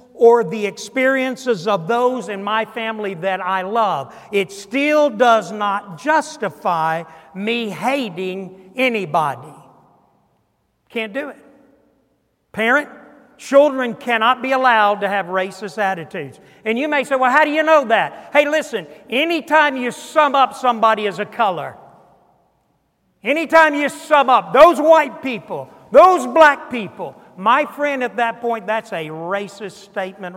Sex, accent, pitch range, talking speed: male, American, 180-250 Hz, 140 wpm